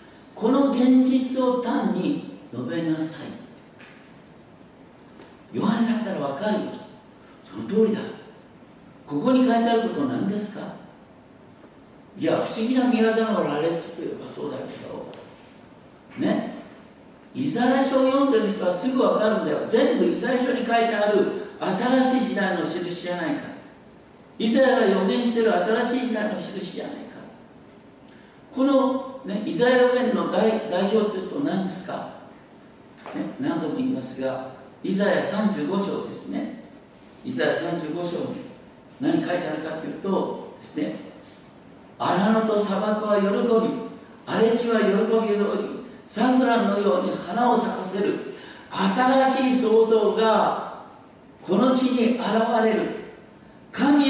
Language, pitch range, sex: Japanese, 210-255 Hz, male